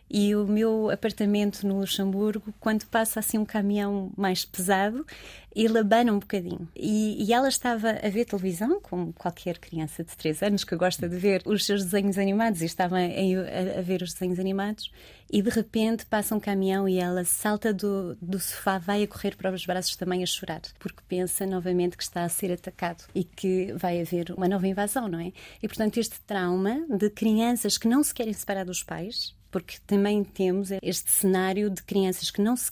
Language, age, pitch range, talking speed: Portuguese, 20-39, 190-225 Hz, 200 wpm